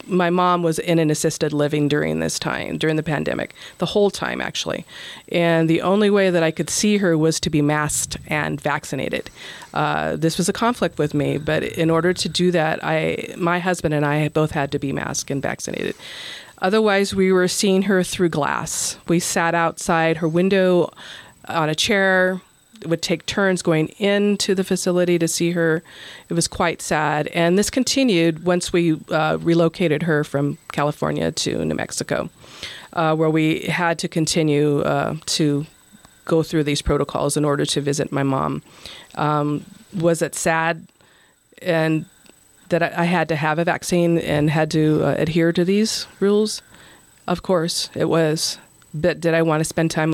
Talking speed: 175 wpm